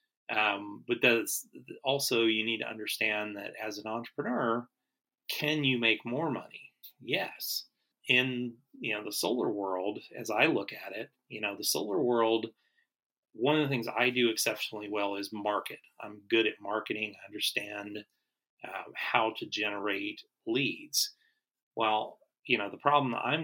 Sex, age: male, 30-49